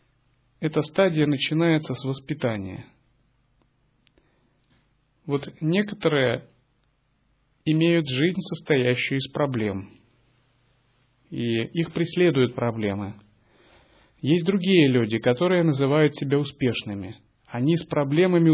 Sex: male